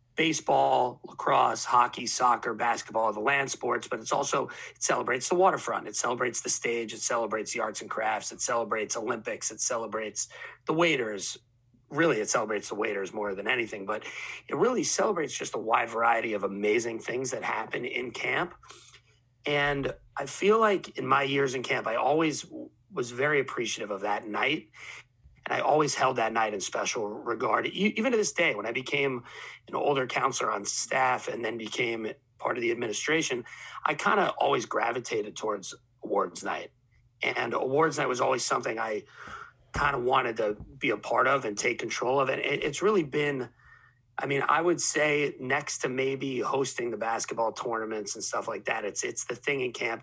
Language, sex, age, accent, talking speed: English, male, 30-49, American, 185 wpm